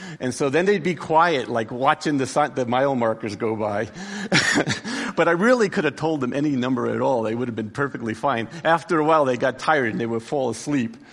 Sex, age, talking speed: male, 50-69, 225 wpm